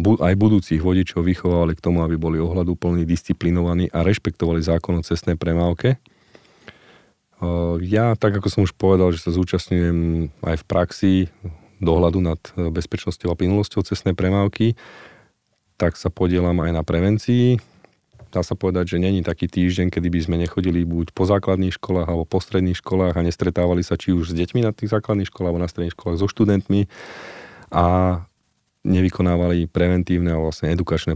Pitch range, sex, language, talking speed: 85-100 Hz, male, Slovak, 160 wpm